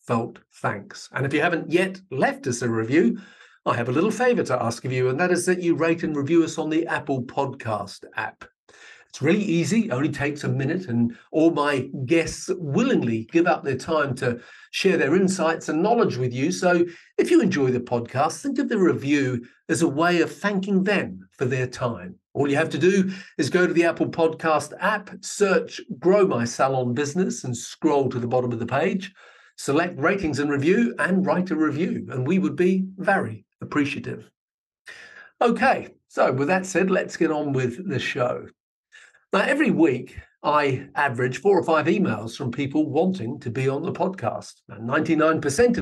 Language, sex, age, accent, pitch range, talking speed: English, male, 50-69, British, 135-185 Hz, 190 wpm